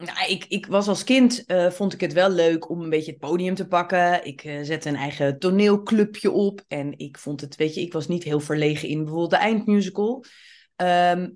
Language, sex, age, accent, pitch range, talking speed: Dutch, female, 30-49, Dutch, 165-200 Hz, 220 wpm